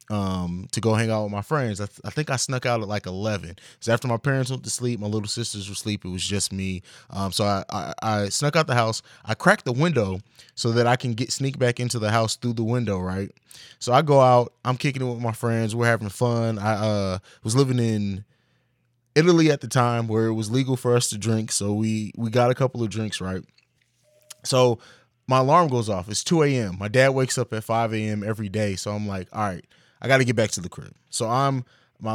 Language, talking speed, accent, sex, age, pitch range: English, 245 wpm, American, male, 20-39, 105-130 Hz